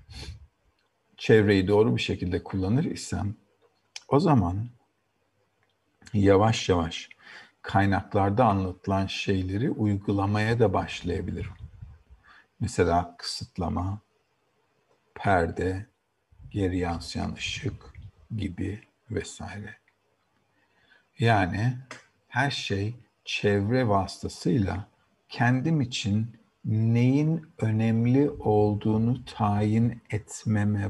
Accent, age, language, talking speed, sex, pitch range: native, 50-69, Turkish, 70 wpm, male, 95-115 Hz